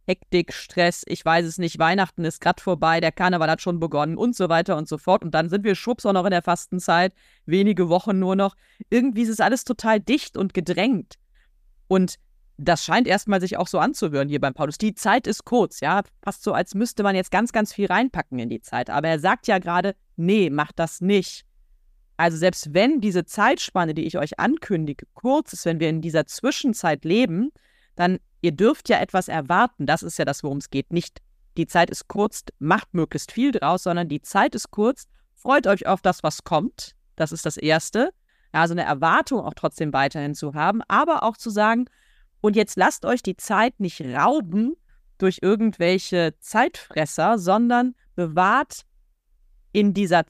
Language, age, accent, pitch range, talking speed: German, 30-49, German, 165-215 Hz, 195 wpm